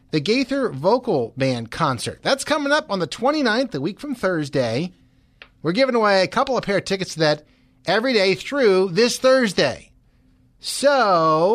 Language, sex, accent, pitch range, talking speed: English, male, American, 130-200 Hz, 165 wpm